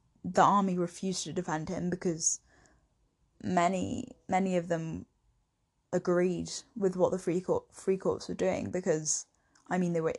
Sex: female